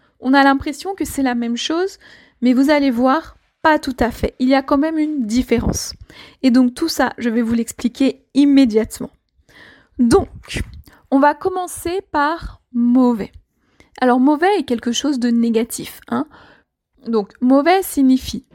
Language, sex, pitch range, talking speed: French, female, 250-310 Hz, 160 wpm